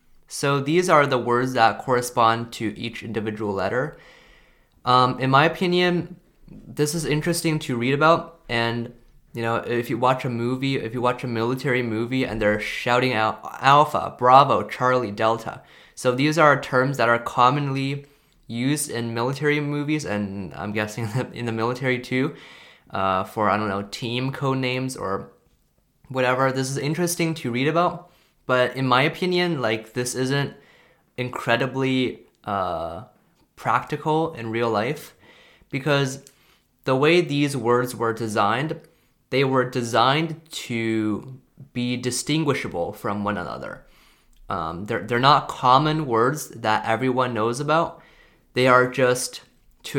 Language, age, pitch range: Chinese, 20-39, 115-145 Hz